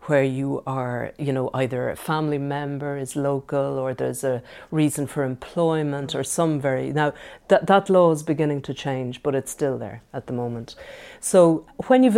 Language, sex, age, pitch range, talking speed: English, female, 50-69, 135-160 Hz, 185 wpm